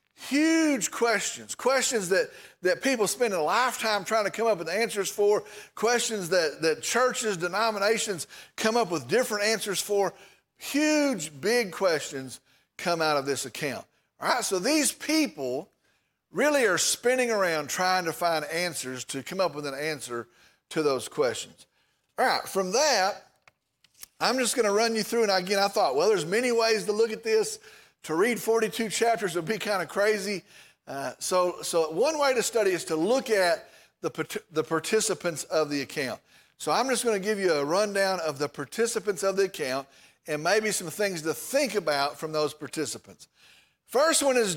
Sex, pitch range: male, 165-235 Hz